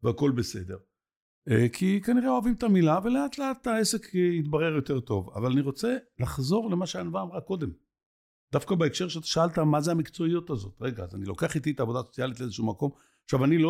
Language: Hebrew